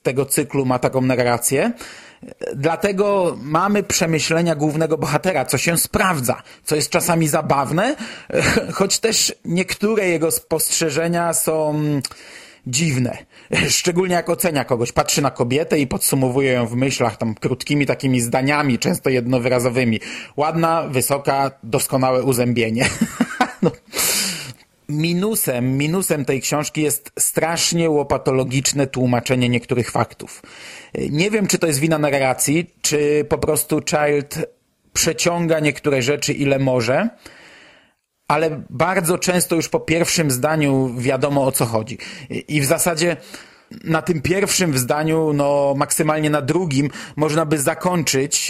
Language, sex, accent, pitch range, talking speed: Polish, male, native, 135-165 Hz, 120 wpm